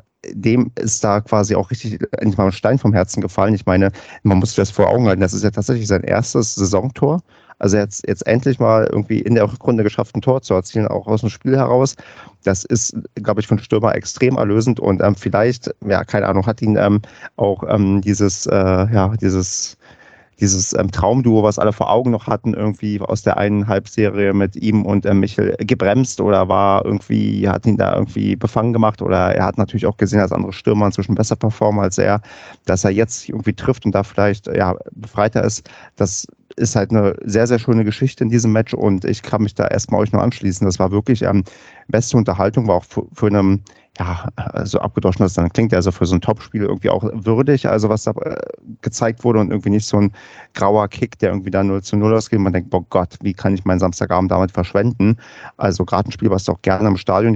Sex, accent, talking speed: male, German, 215 wpm